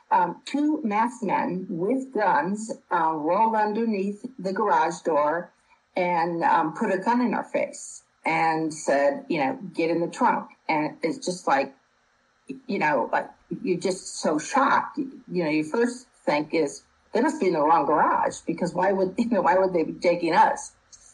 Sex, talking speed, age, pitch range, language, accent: female, 175 wpm, 50-69, 170-250 Hz, English, American